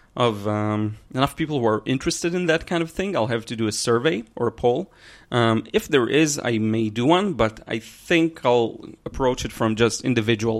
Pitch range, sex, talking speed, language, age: 110-145 Hz, male, 215 wpm, English, 30-49